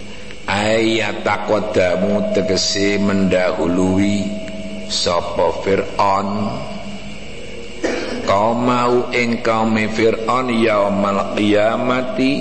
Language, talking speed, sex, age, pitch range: Indonesian, 70 wpm, male, 60-79, 100-115 Hz